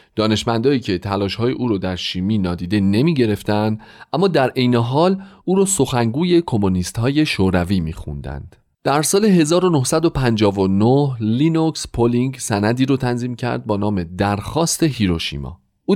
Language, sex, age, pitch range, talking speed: Persian, male, 40-59, 95-140 Hz, 125 wpm